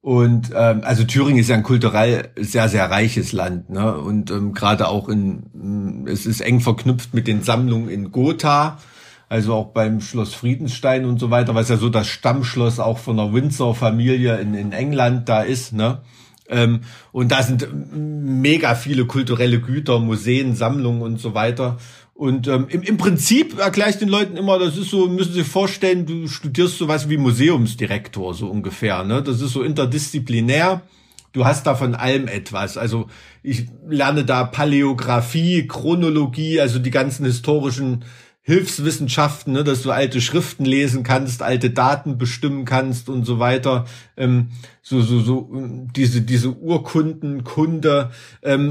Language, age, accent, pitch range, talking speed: German, 50-69, German, 120-145 Hz, 165 wpm